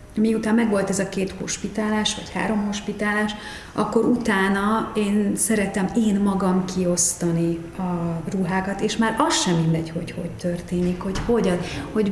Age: 40-59